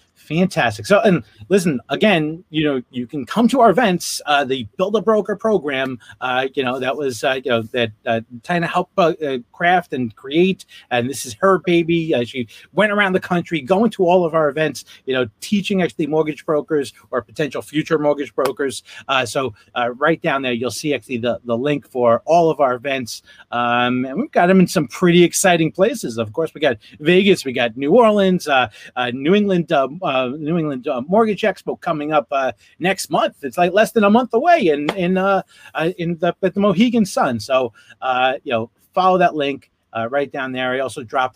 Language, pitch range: English, 125-185 Hz